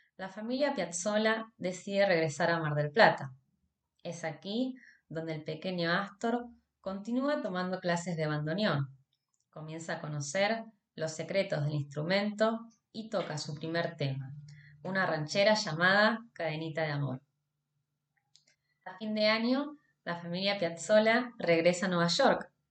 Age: 20-39